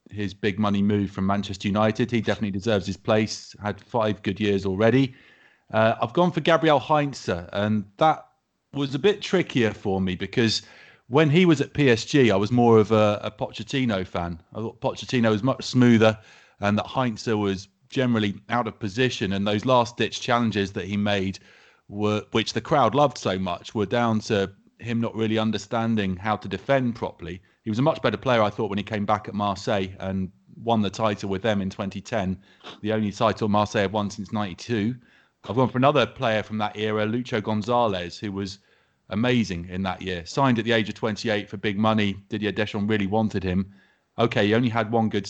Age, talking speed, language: 30-49, 200 wpm, English